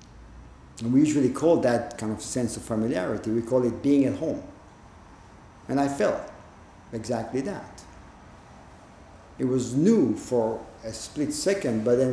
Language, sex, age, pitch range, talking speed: English, male, 50-69, 105-140 Hz, 145 wpm